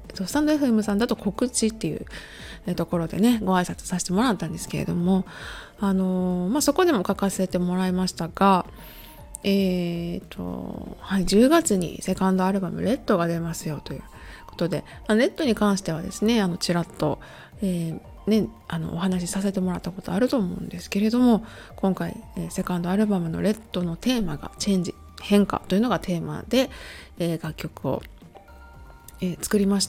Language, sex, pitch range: Japanese, female, 170-210 Hz